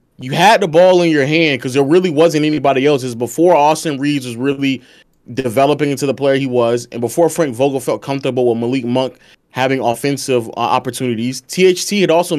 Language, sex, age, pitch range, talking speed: English, male, 20-39, 135-180 Hz, 200 wpm